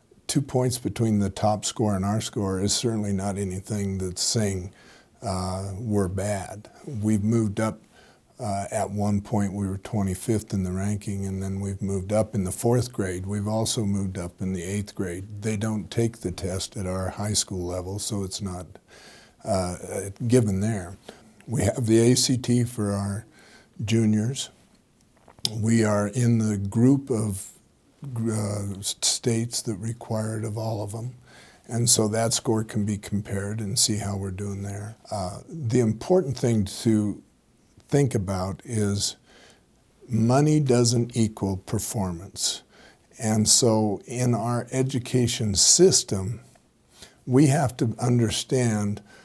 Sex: male